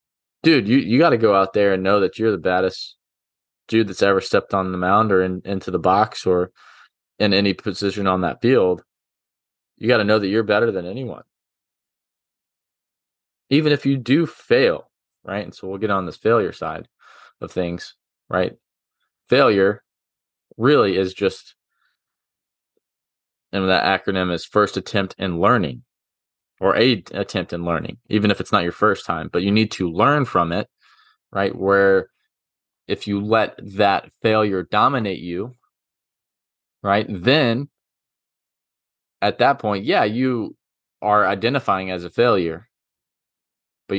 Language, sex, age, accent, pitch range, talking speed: English, male, 20-39, American, 95-110 Hz, 155 wpm